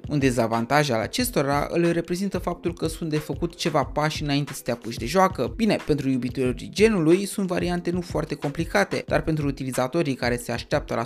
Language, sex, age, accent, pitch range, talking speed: Romanian, male, 20-39, native, 130-180 Hz, 190 wpm